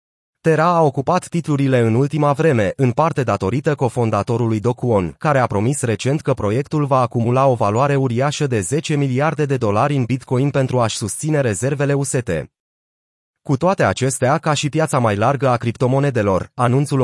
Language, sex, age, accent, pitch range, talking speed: Romanian, male, 30-49, native, 120-150 Hz, 160 wpm